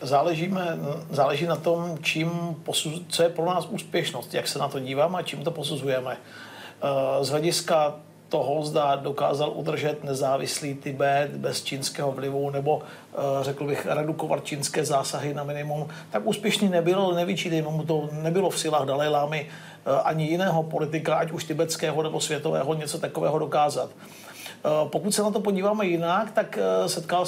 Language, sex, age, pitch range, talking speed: Czech, male, 50-69, 150-175 Hz, 150 wpm